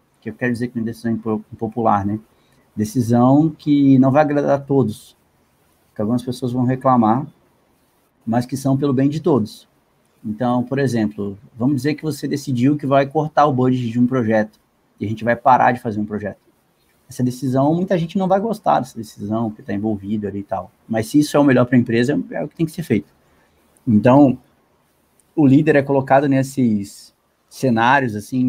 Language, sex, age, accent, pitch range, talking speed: Portuguese, male, 20-39, Brazilian, 110-135 Hz, 195 wpm